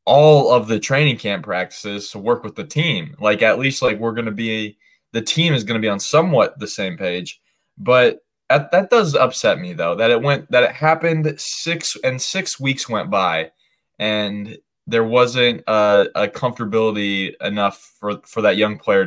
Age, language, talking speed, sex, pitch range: 20-39, English, 190 wpm, male, 100-130 Hz